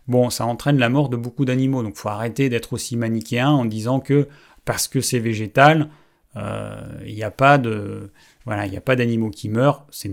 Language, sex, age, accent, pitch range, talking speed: French, male, 30-49, French, 110-135 Hz, 185 wpm